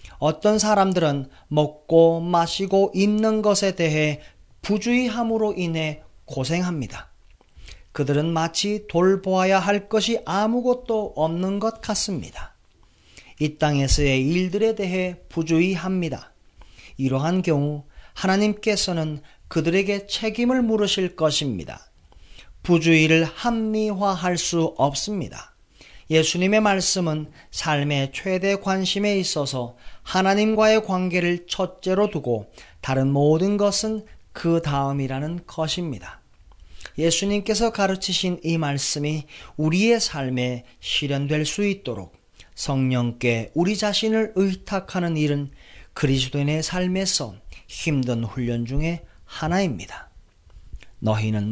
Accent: native